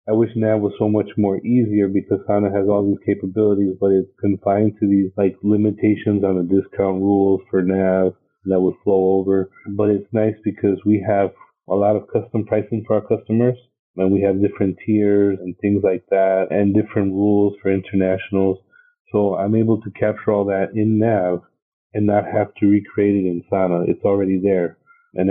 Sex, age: male, 30-49